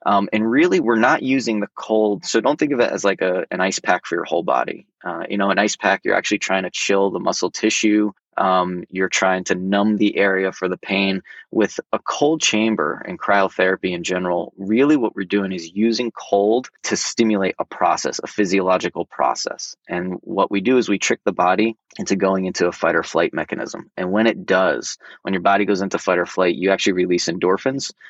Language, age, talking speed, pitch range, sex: English, 20-39, 220 wpm, 95-110 Hz, male